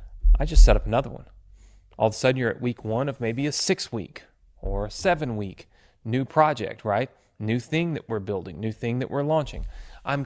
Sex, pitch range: male, 110-150 Hz